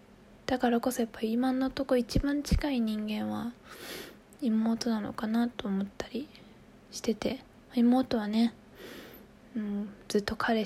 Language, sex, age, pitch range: Japanese, female, 20-39, 215-250 Hz